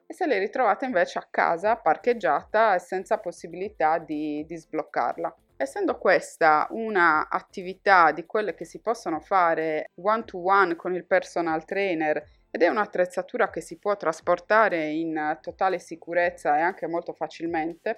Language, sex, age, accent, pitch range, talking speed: Italian, female, 20-39, native, 165-225 Hz, 145 wpm